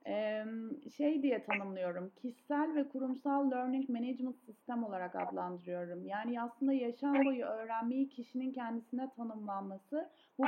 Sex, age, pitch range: female, 40-59, 230-290 Hz